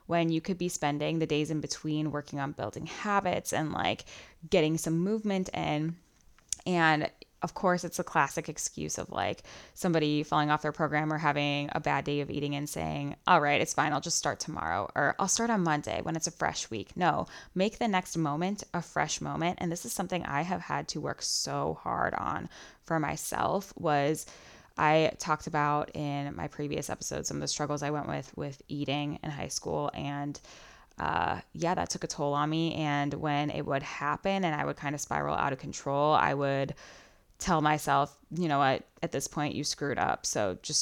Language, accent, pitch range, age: English, American, 145-165 Hz, 10-29